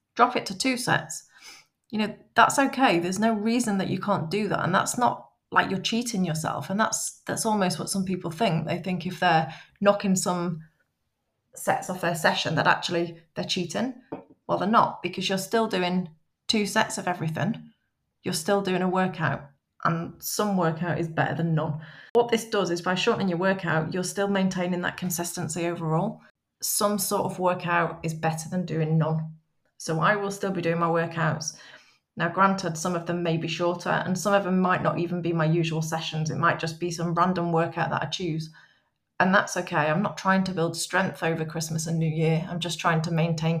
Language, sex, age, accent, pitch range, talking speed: English, female, 20-39, British, 165-195 Hz, 205 wpm